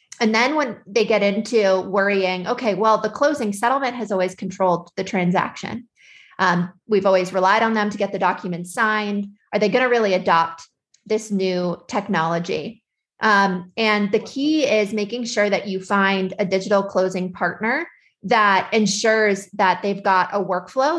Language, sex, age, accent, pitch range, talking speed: English, female, 20-39, American, 185-215 Hz, 165 wpm